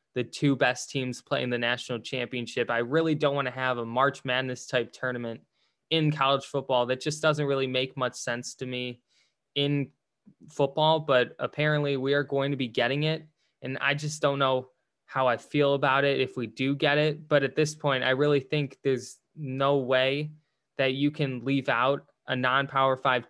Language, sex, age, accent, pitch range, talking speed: English, male, 10-29, American, 125-150 Hz, 195 wpm